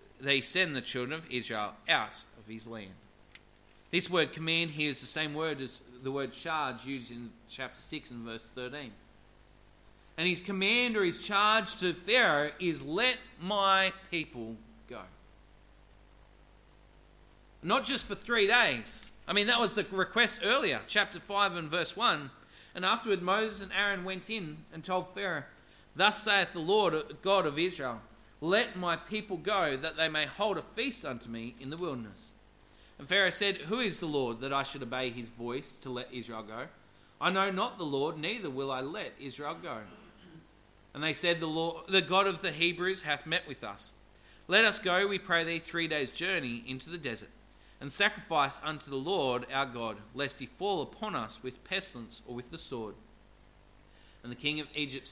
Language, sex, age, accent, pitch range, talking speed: English, male, 40-59, Australian, 125-190 Hz, 180 wpm